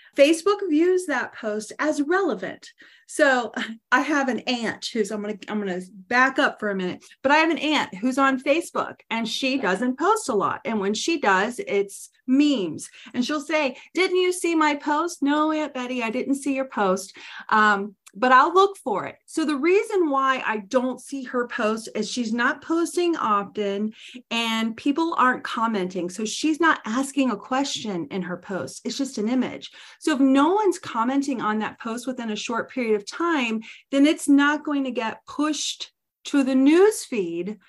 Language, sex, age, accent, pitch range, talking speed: English, female, 40-59, American, 210-295 Hz, 195 wpm